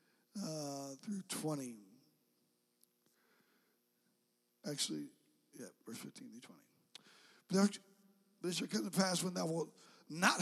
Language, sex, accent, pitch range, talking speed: English, male, American, 150-190 Hz, 110 wpm